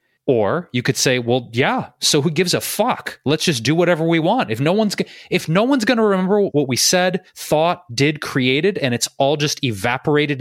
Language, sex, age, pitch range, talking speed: English, male, 30-49, 125-165 Hz, 220 wpm